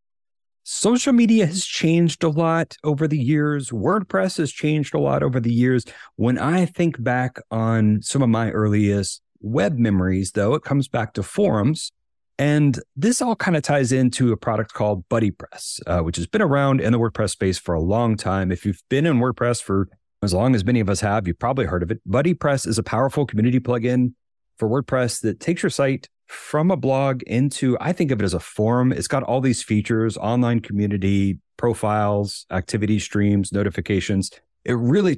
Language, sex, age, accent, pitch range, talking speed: English, male, 30-49, American, 105-140 Hz, 190 wpm